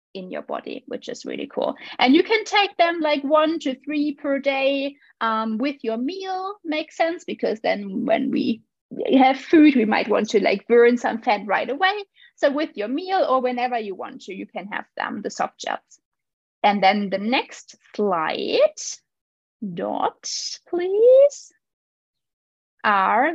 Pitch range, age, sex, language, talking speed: 225-320 Hz, 20-39, female, English, 165 wpm